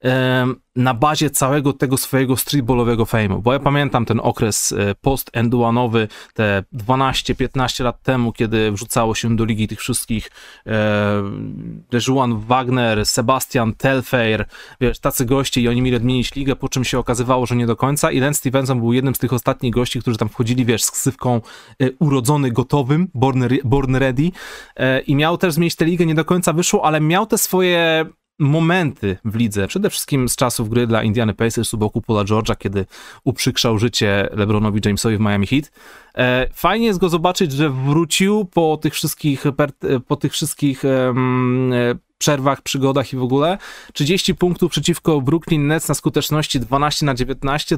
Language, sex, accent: Polish, male, native